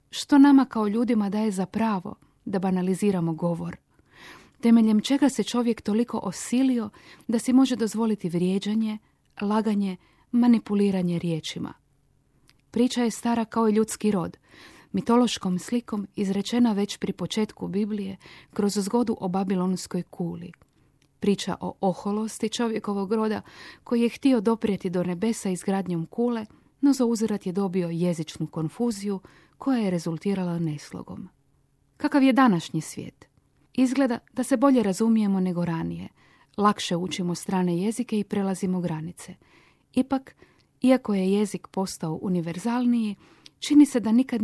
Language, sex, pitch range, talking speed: Croatian, female, 180-235 Hz, 125 wpm